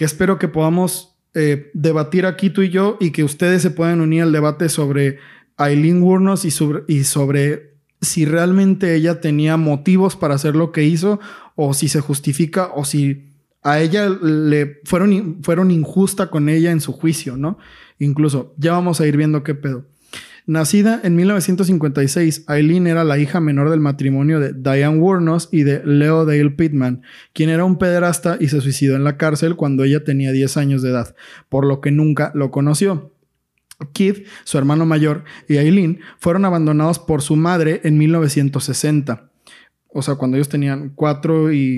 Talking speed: 175 wpm